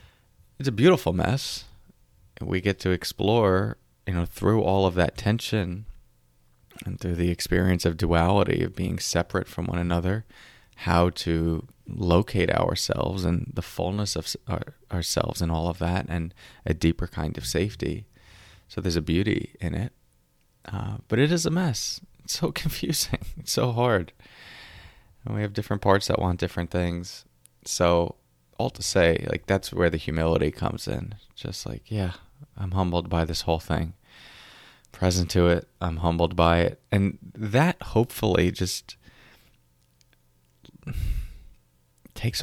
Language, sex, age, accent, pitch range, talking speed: English, male, 20-39, American, 80-105 Hz, 150 wpm